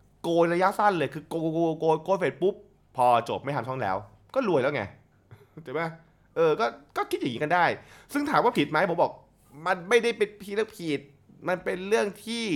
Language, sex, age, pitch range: Thai, male, 20-39, 110-160 Hz